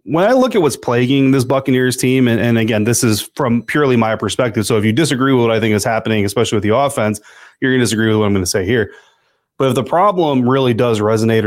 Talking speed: 260 wpm